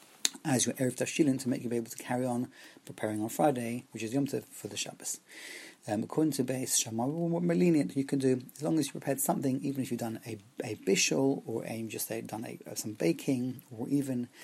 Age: 30-49